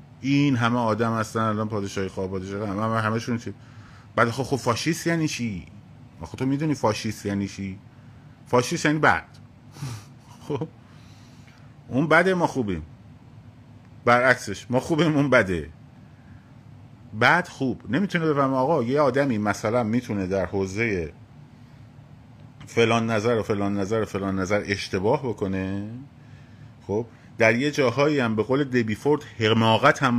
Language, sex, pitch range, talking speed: Persian, male, 110-130 Hz, 140 wpm